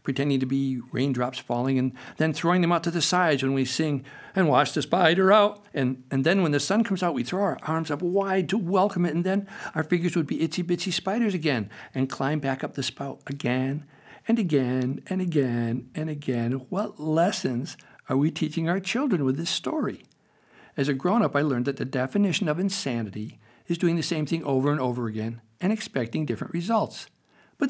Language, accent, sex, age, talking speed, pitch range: English, American, male, 60-79, 205 wpm, 130-190 Hz